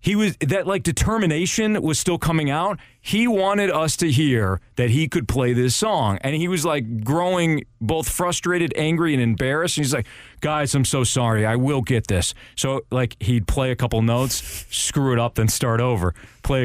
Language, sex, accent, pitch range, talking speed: English, male, American, 115-150 Hz, 200 wpm